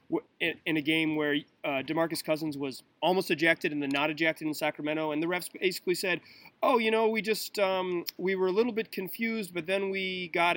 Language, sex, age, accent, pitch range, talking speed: English, male, 30-49, American, 145-185 Hz, 205 wpm